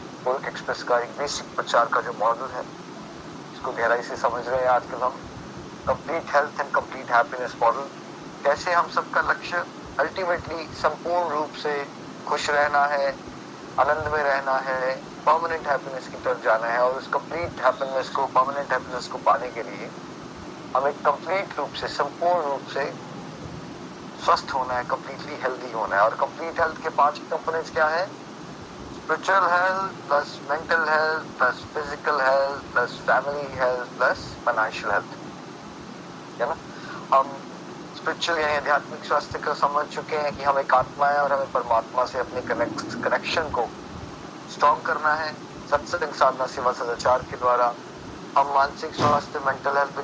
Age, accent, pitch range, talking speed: 30-49, native, 130-150 Hz, 110 wpm